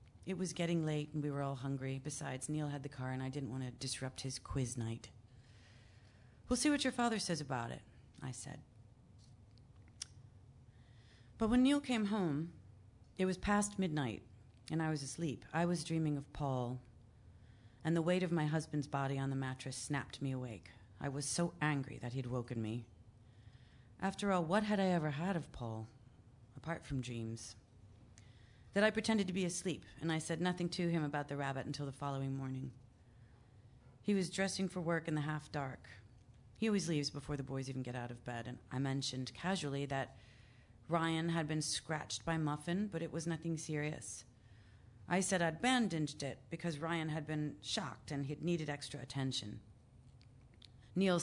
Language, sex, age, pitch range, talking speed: English, female, 40-59, 115-160 Hz, 180 wpm